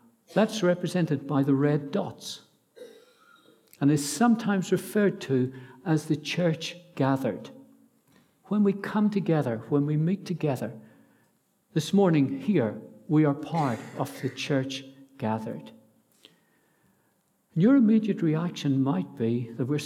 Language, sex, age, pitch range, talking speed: English, male, 60-79, 135-205 Hz, 120 wpm